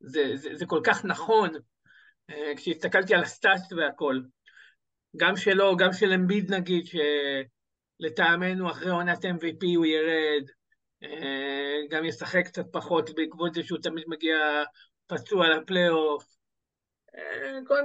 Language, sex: Hebrew, male